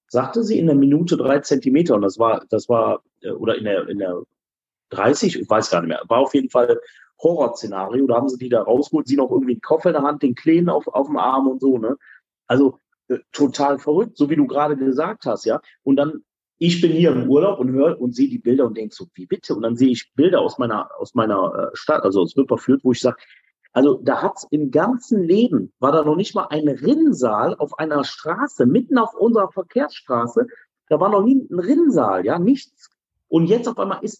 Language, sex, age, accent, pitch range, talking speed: German, male, 40-59, German, 130-200 Hz, 225 wpm